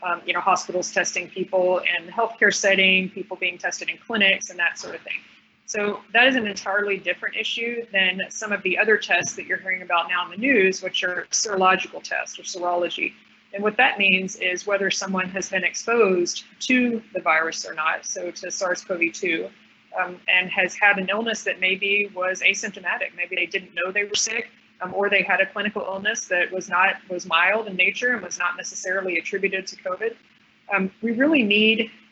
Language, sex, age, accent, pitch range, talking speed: English, female, 30-49, American, 185-215 Hz, 195 wpm